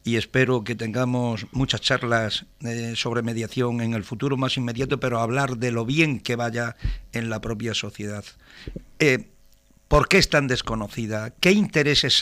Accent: Spanish